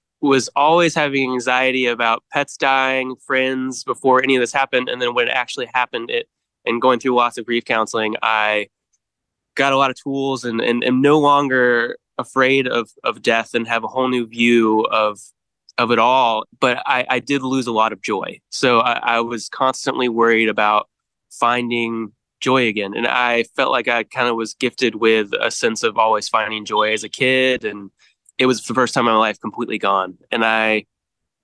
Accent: American